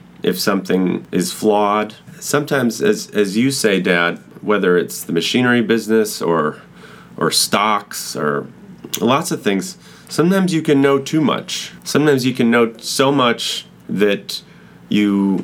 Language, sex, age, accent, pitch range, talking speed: English, male, 30-49, American, 90-115 Hz, 140 wpm